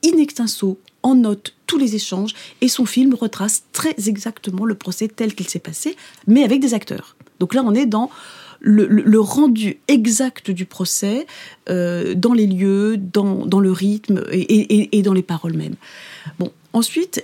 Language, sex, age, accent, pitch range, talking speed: French, female, 30-49, French, 195-255 Hz, 180 wpm